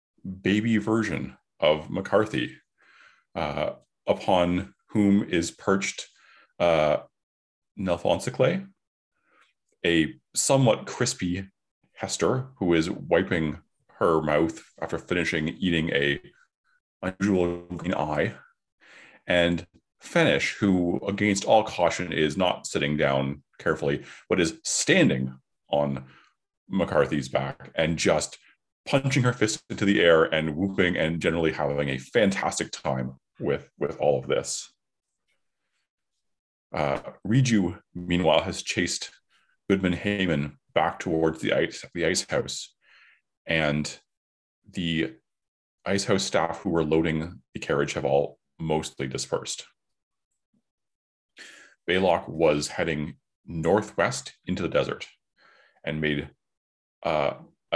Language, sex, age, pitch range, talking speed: English, male, 30-49, 75-100 Hz, 105 wpm